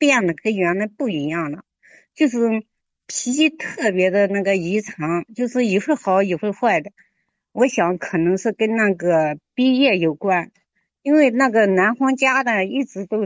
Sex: female